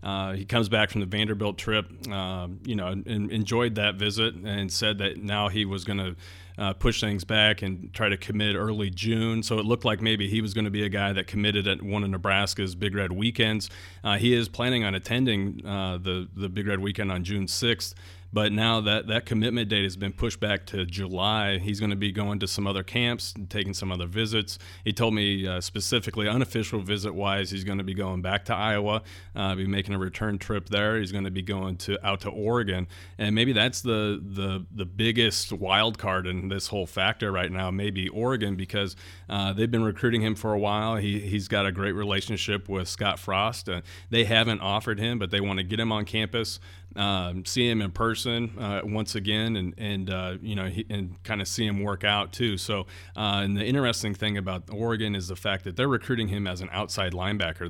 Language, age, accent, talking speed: English, 40-59, American, 220 wpm